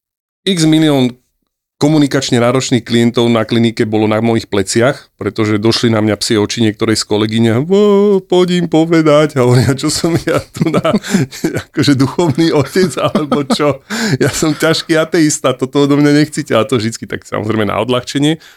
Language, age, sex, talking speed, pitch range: Slovak, 40-59, male, 165 wpm, 105-130 Hz